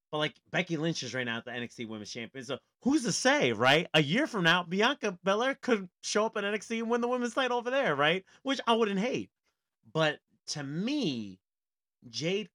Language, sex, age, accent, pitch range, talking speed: English, male, 30-49, American, 120-185 Hz, 210 wpm